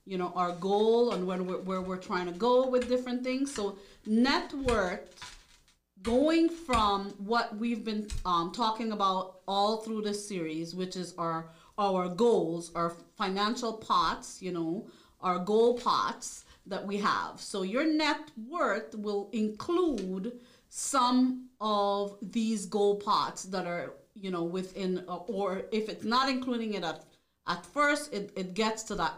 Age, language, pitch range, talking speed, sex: 40-59, English, 180-235 Hz, 160 wpm, female